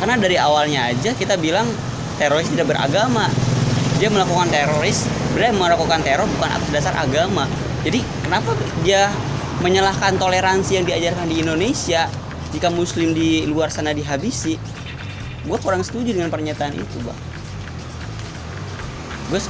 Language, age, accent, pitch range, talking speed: Indonesian, 20-39, native, 130-170 Hz, 130 wpm